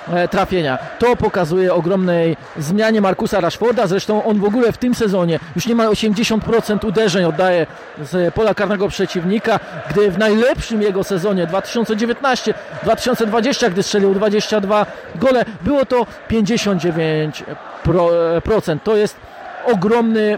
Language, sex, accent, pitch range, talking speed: Polish, male, native, 185-230 Hz, 115 wpm